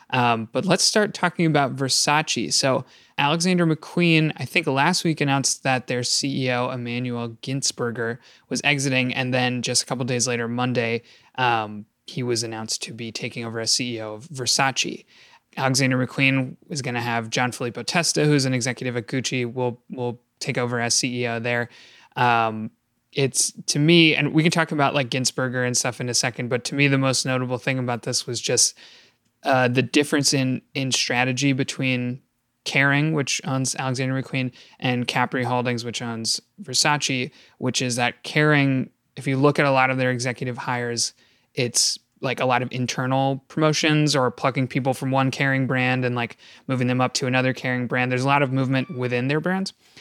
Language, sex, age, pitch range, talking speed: English, male, 20-39, 125-140 Hz, 185 wpm